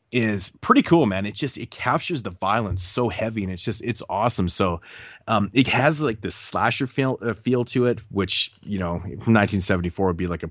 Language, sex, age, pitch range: English, male, 30-49, 95-120 Hz